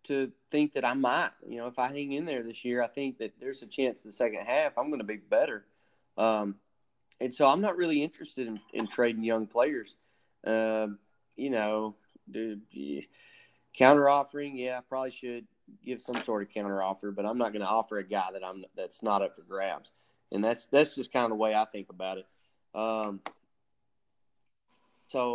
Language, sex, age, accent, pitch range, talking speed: English, male, 20-39, American, 105-130 Hz, 200 wpm